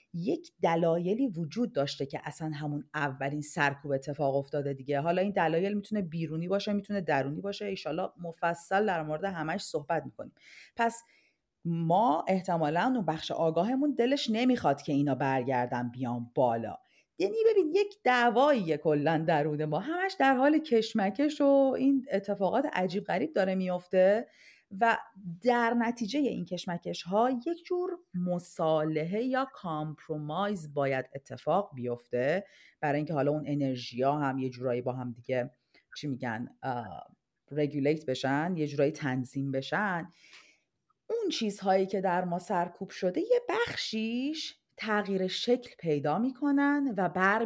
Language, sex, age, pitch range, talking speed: Persian, female, 40-59, 145-225 Hz, 135 wpm